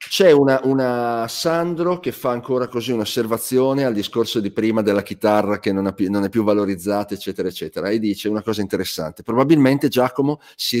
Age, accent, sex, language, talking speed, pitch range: 40-59, native, male, Italian, 165 wpm, 100-125 Hz